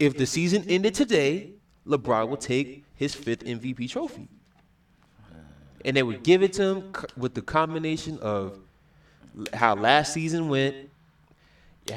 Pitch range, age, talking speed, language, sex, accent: 120-150 Hz, 20-39, 140 wpm, English, male, American